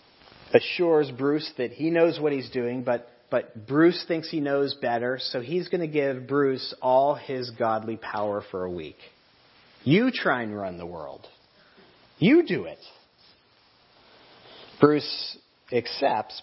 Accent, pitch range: American, 120-155 Hz